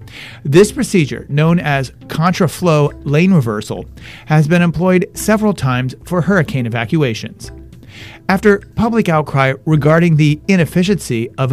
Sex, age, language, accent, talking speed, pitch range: male, 40-59, English, American, 115 wpm, 135-180 Hz